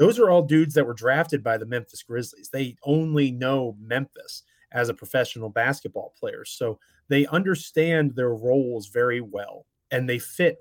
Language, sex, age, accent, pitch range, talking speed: English, male, 30-49, American, 115-140 Hz, 170 wpm